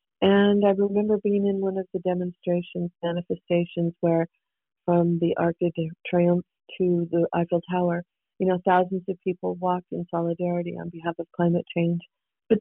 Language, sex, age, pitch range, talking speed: English, female, 40-59, 165-180 Hz, 160 wpm